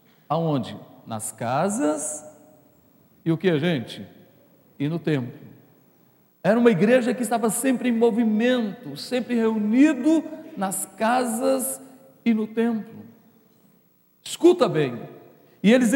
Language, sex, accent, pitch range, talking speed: Portuguese, male, Brazilian, 165-245 Hz, 110 wpm